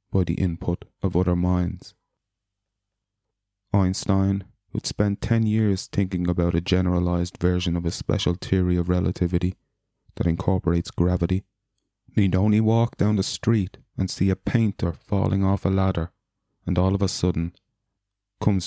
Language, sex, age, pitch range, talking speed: English, male, 30-49, 90-105 Hz, 145 wpm